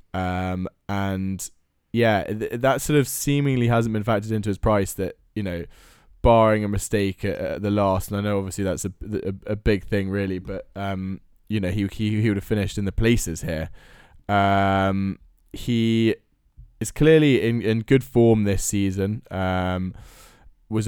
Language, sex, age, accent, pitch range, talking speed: English, male, 20-39, British, 90-110 Hz, 175 wpm